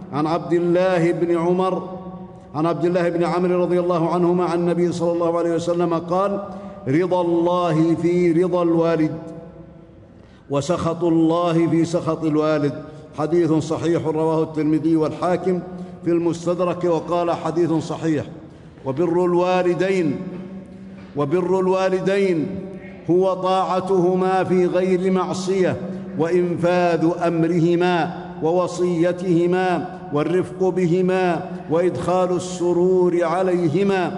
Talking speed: 100 wpm